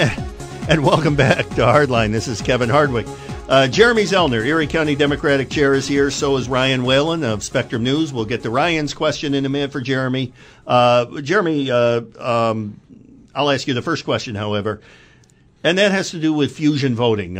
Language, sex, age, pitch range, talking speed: English, male, 50-69, 110-140 Hz, 185 wpm